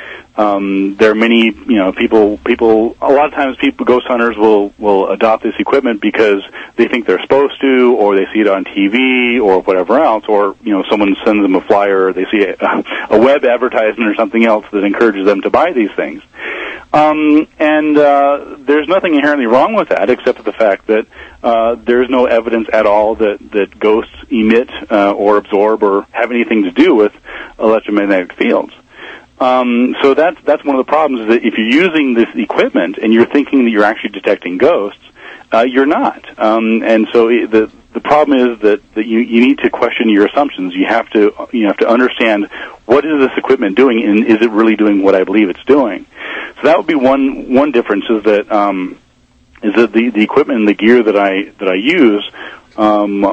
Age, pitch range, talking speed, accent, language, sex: 40-59, 105-125 Hz, 205 wpm, American, English, male